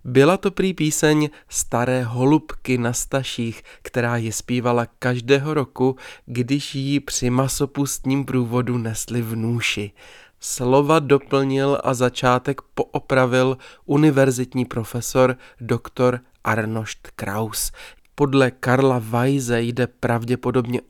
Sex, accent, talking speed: male, native, 100 wpm